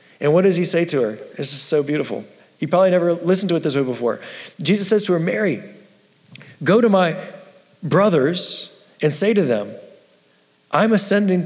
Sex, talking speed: male, 185 wpm